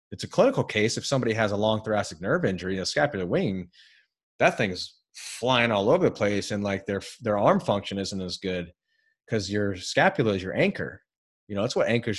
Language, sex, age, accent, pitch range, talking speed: English, male, 30-49, American, 100-130 Hz, 205 wpm